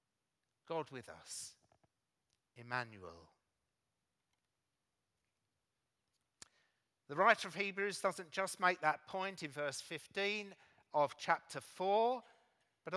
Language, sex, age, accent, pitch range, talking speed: English, male, 50-69, British, 150-195 Hz, 95 wpm